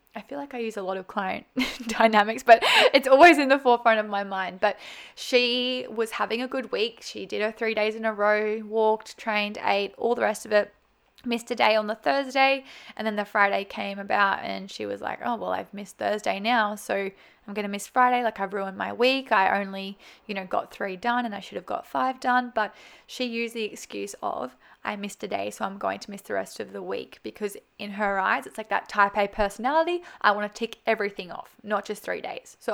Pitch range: 205-250 Hz